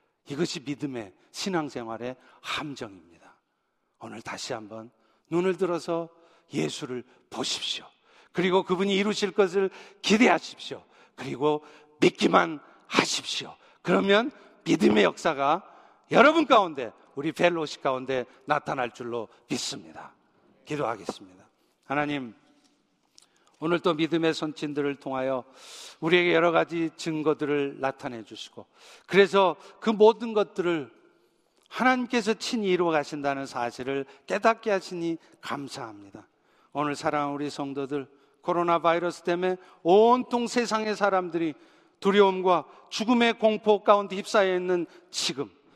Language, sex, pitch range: Korean, male, 145-220 Hz